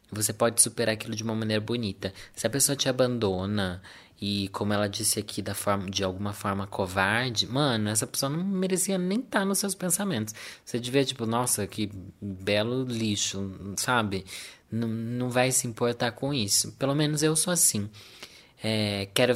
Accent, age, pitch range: Brazilian, 20-39, 105-135 Hz